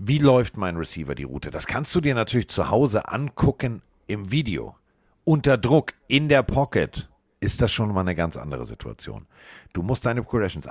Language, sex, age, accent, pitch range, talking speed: German, male, 50-69, German, 90-130 Hz, 185 wpm